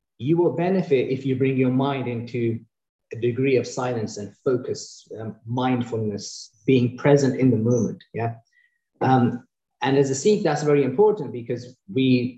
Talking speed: 160 wpm